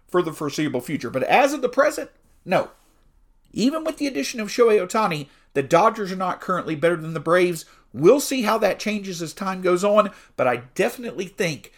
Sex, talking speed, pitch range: male, 195 wpm, 145-220 Hz